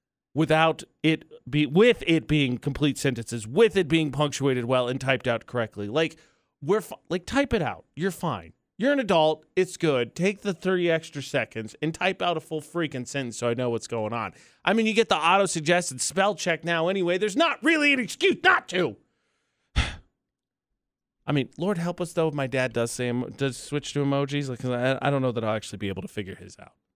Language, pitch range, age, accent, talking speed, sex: English, 140-195 Hz, 30-49, American, 215 wpm, male